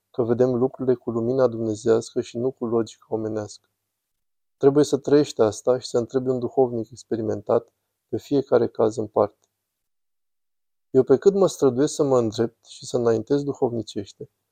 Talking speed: 155 wpm